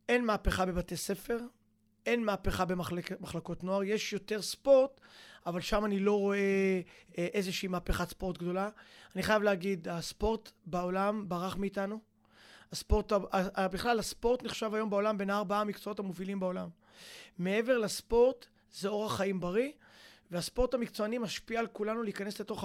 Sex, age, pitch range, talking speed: male, 20-39, 185-220 Hz, 140 wpm